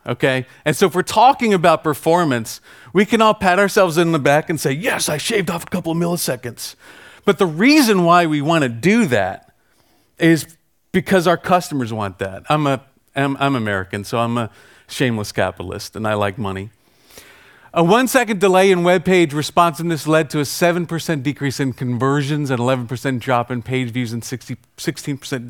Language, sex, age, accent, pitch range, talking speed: English, male, 40-59, American, 115-170 Hz, 180 wpm